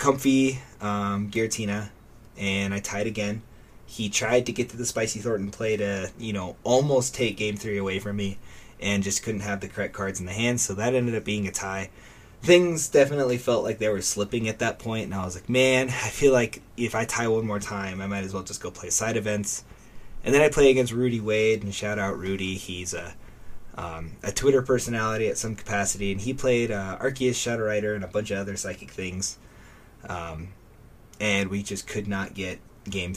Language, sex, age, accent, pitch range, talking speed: English, male, 20-39, American, 100-115 Hz, 215 wpm